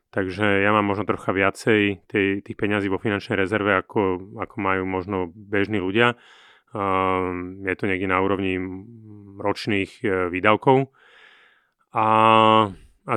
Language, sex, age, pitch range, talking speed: Slovak, male, 30-49, 95-110 Hz, 130 wpm